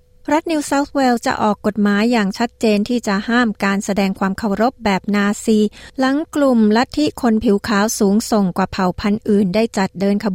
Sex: female